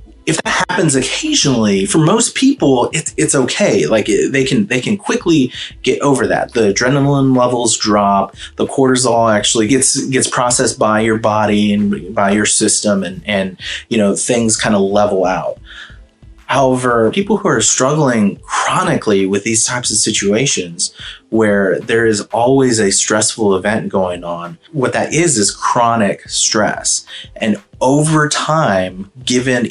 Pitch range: 100-130 Hz